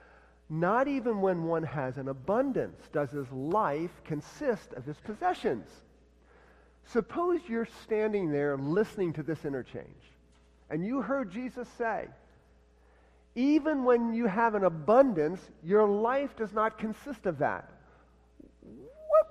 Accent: American